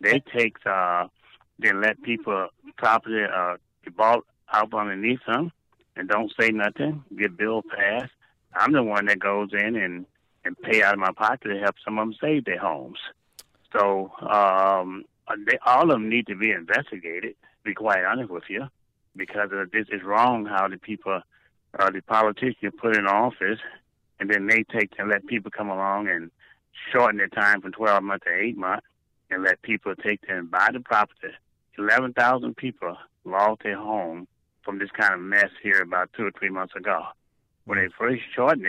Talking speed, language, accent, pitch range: 190 wpm, English, American, 100-110 Hz